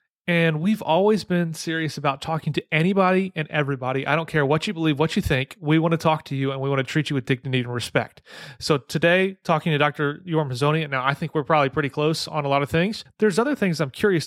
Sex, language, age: male, English, 30-49